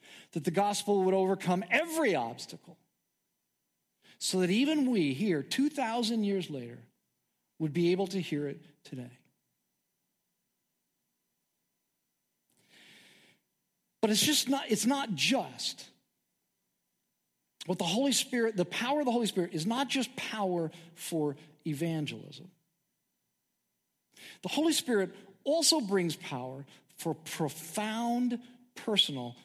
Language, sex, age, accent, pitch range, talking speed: English, male, 50-69, American, 150-230 Hz, 110 wpm